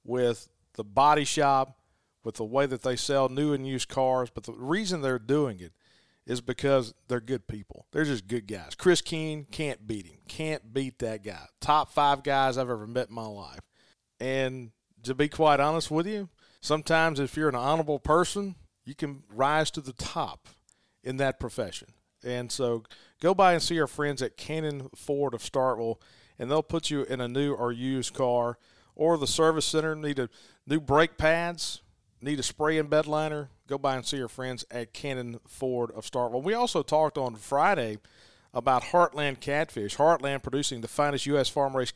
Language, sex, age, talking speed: English, male, 40-59, 190 wpm